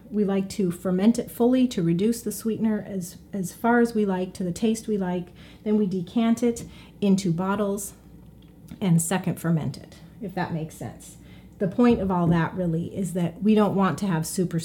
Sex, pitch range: female, 170-230 Hz